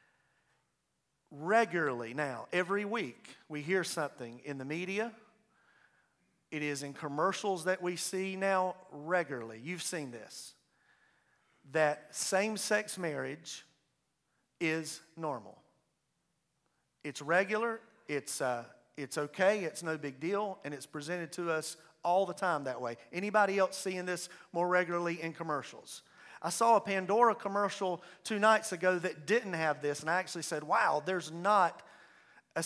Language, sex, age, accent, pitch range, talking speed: English, male, 40-59, American, 160-200 Hz, 140 wpm